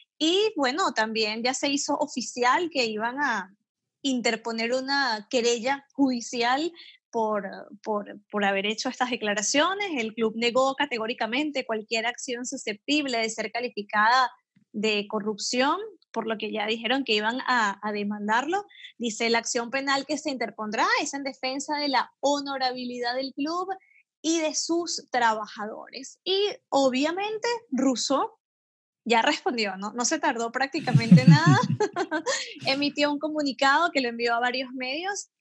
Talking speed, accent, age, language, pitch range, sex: 140 wpm, American, 20-39, Spanish, 230-285 Hz, female